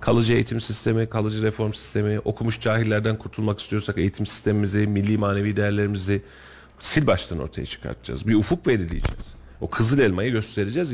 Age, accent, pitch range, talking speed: 40-59, native, 100-165 Hz, 145 wpm